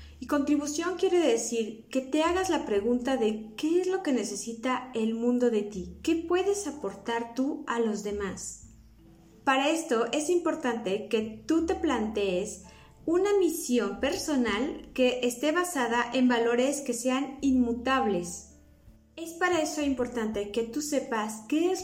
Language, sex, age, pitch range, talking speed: English, female, 30-49, 220-295 Hz, 150 wpm